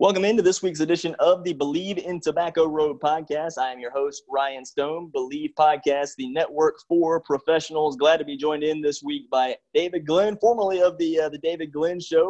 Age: 20-39